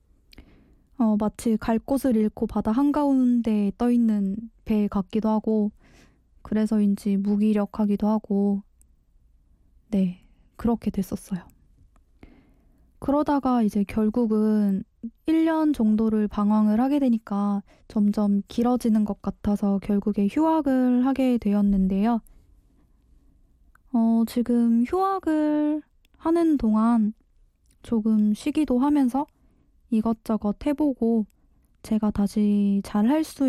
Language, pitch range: Korean, 200-250 Hz